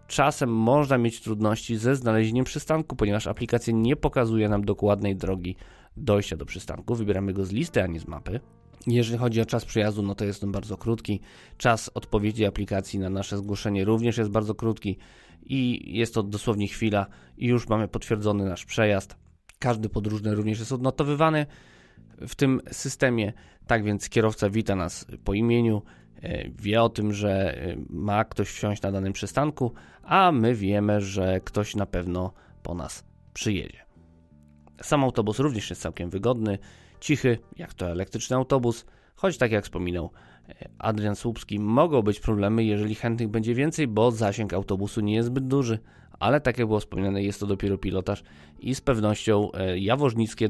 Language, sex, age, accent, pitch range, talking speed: Polish, male, 20-39, native, 100-120 Hz, 160 wpm